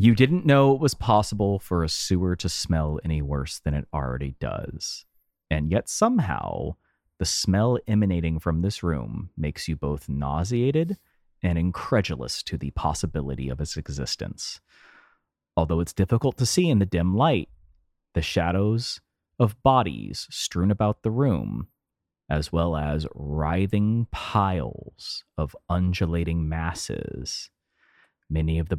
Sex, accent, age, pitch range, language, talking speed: male, American, 30-49, 75-105 Hz, English, 140 wpm